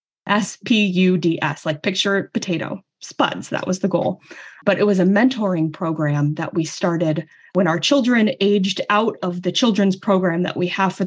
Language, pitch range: English, 170-200 Hz